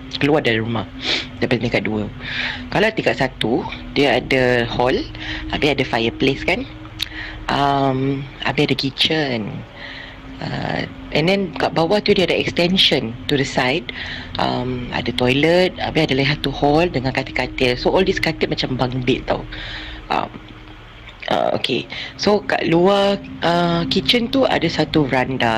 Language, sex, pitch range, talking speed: Malay, female, 115-155 Hz, 150 wpm